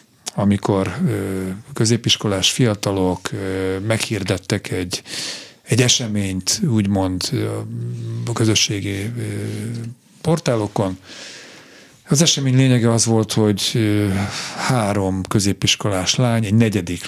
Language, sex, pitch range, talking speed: Hungarian, male, 95-120 Hz, 75 wpm